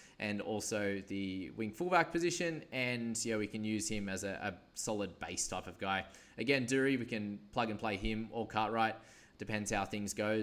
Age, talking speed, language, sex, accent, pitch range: 20-39, 195 wpm, English, male, Australian, 100-125 Hz